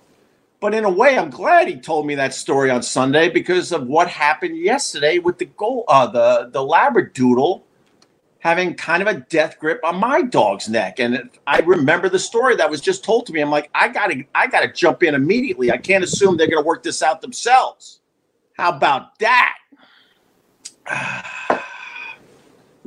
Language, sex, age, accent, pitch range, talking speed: English, male, 50-69, American, 140-215 Hz, 185 wpm